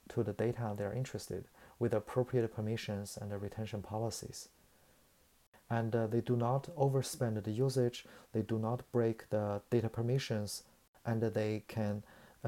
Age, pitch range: 30-49, 105-125 Hz